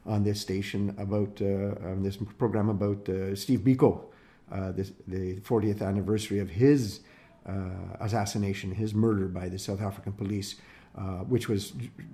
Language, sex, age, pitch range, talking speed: English, male, 50-69, 95-120 Hz, 150 wpm